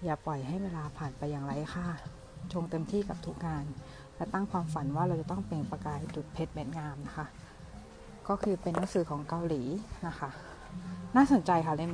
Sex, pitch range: female, 150-185 Hz